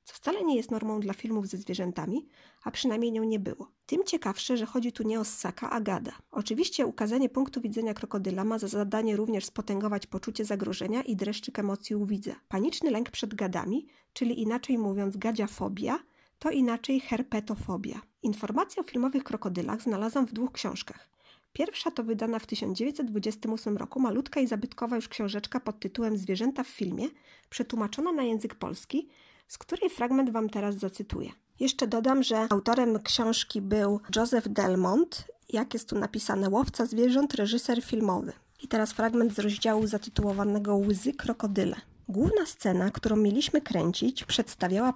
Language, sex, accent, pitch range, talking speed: Polish, female, native, 210-255 Hz, 155 wpm